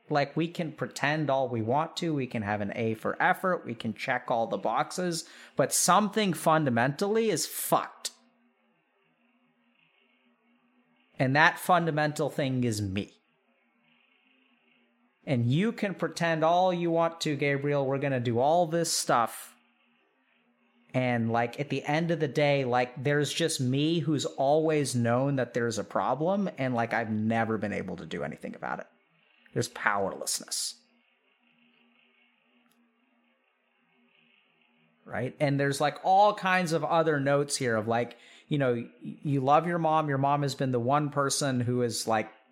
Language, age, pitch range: English, 30-49, 125-170 Hz